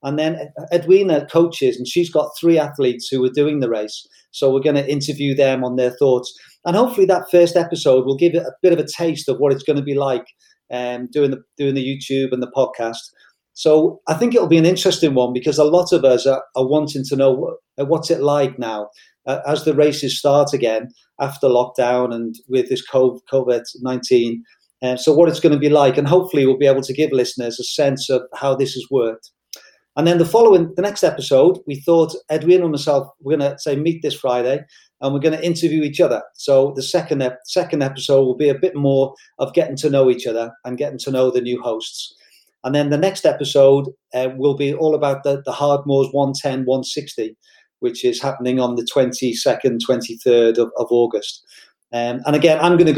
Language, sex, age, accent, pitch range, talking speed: English, male, 40-59, British, 125-155 Hz, 215 wpm